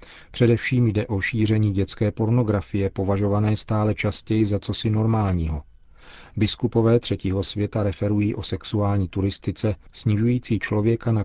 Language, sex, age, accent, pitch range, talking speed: Czech, male, 40-59, native, 95-115 Hz, 115 wpm